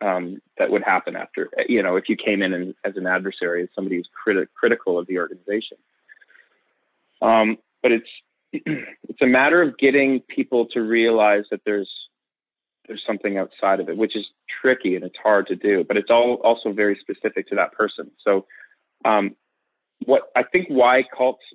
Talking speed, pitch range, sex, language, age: 180 wpm, 95-125 Hz, male, English, 30-49